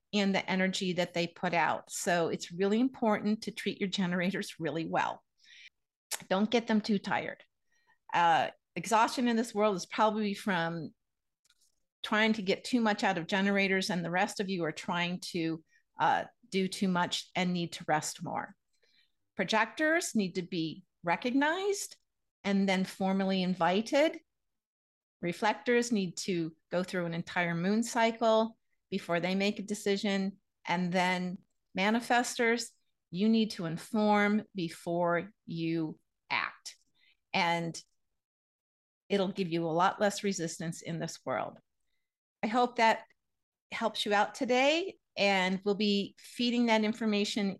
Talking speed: 140 wpm